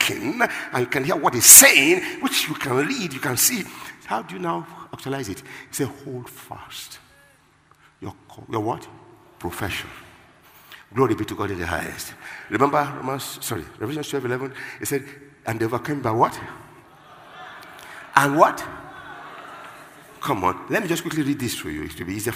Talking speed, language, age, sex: 170 wpm, English, 50-69, male